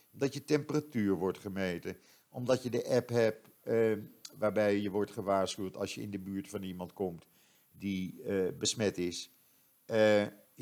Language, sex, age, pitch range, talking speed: Dutch, male, 50-69, 90-110 Hz, 160 wpm